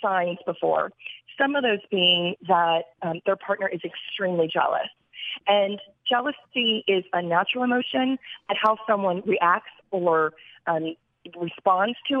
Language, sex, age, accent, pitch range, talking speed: English, female, 30-49, American, 185-230 Hz, 135 wpm